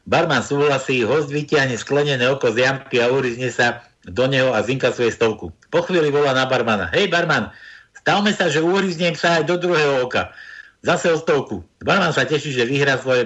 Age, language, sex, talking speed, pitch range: 60-79, Slovak, male, 185 wpm, 135-180 Hz